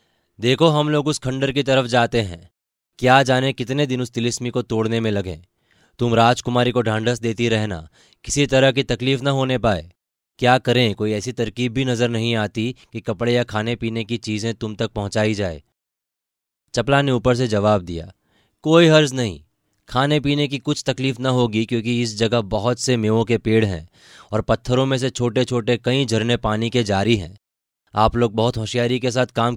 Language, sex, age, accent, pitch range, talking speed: Hindi, male, 20-39, native, 100-125 Hz, 195 wpm